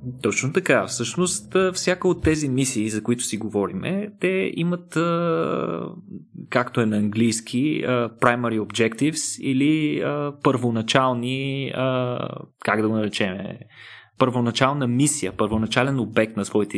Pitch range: 115-165 Hz